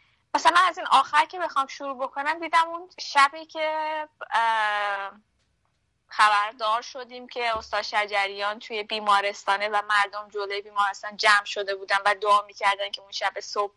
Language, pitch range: Persian, 210-255 Hz